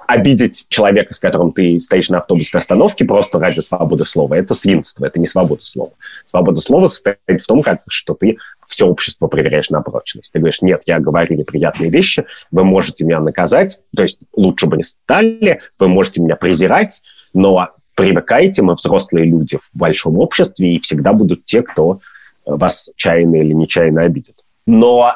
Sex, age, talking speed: male, 30-49, 170 wpm